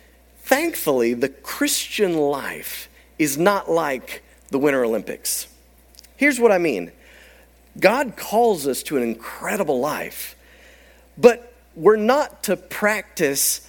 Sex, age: male, 40-59